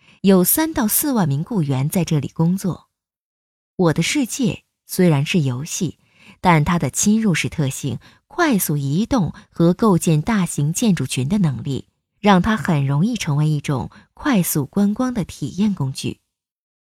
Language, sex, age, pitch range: Chinese, female, 20-39, 150-215 Hz